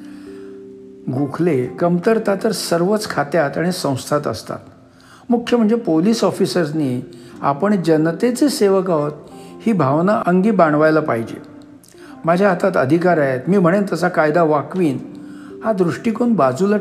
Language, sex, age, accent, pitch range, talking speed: Marathi, male, 60-79, native, 145-215 Hz, 120 wpm